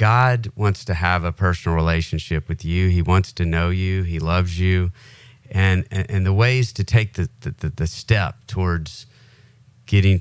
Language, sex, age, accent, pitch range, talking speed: English, male, 40-59, American, 85-110 Hz, 175 wpm